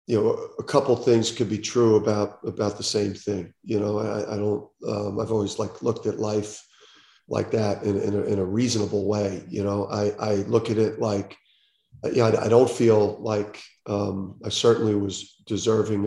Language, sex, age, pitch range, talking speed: English, male, 40-59, 100-115 Hz, 200 wpm